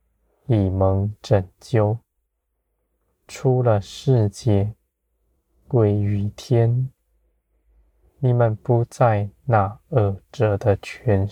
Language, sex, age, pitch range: Chinese, male, 20-39, 85-110 Hz